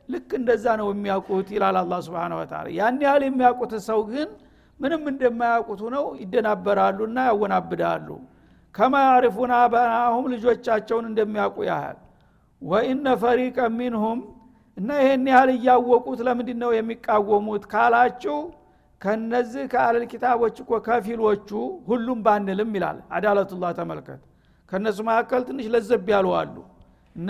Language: Amharic